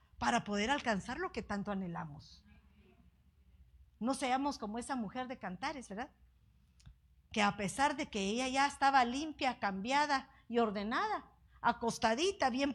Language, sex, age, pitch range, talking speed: Spanish, female, 50-69, 190-265 Hz, 135 wpm